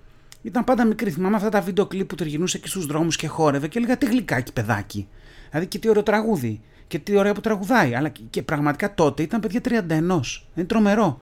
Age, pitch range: 30-49, 125-200 Hz